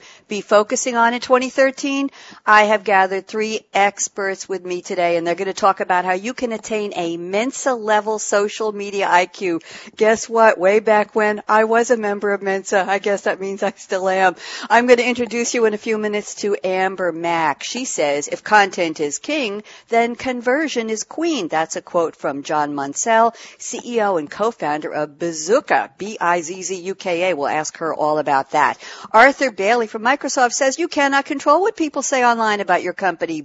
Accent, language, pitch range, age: American, English, 175-235 Hz, 60-79